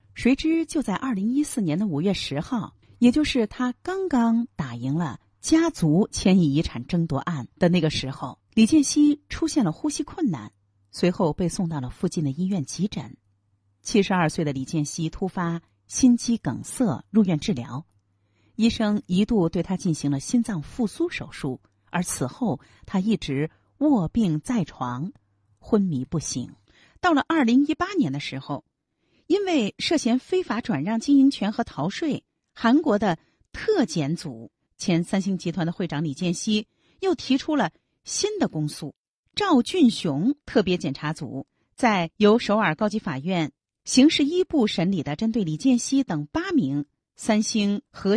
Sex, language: female, Chinese